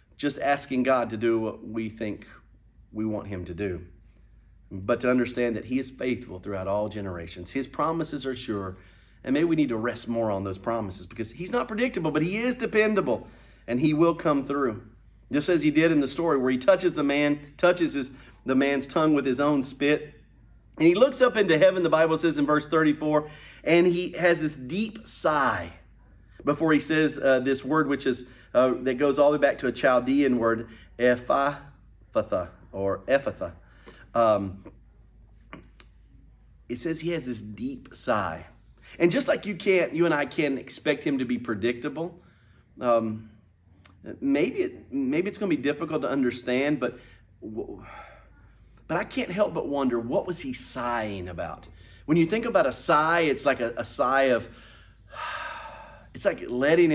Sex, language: male, English